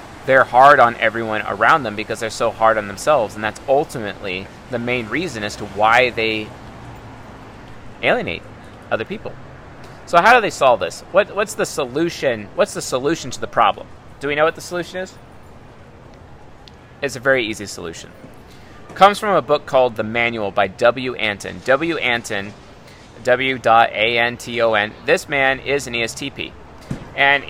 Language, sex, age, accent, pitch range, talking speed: English, male, 30-49, American, 110-155 Hz, 160 wpm